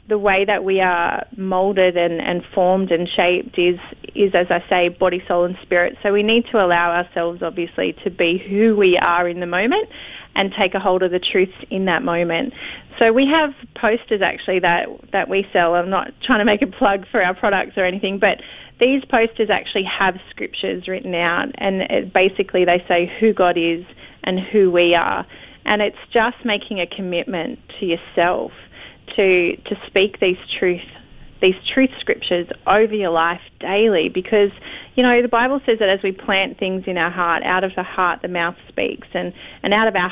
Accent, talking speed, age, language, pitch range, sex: Australian, 195 wpm, 30-49, English, 175-215 Hz, female